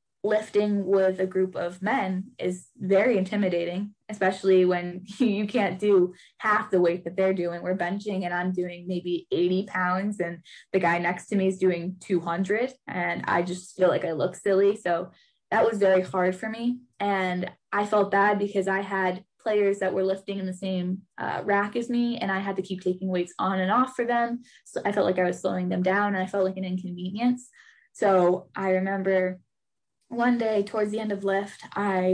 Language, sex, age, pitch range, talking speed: English, female, 10-29, 185-210 Hz, 200 wpm